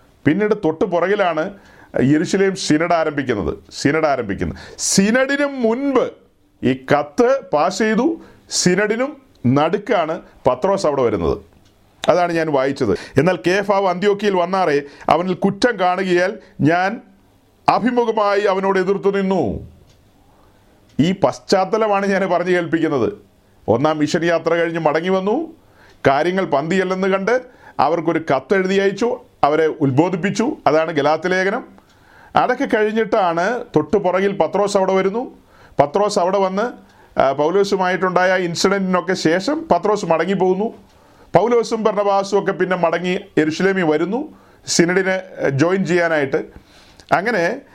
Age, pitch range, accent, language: 40-59, 160-205 Hz, native, Malayalam